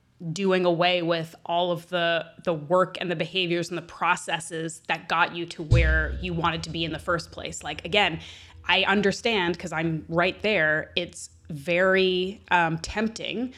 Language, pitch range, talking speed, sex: English, 165-195 Hz, 170 wpm, female